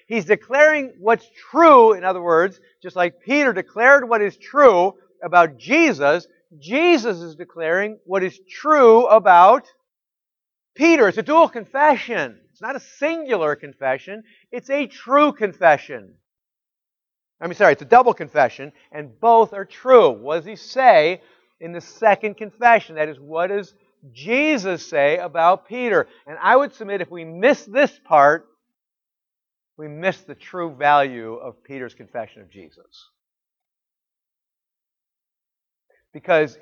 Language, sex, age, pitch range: English, male, 50-69, 175-260 Hz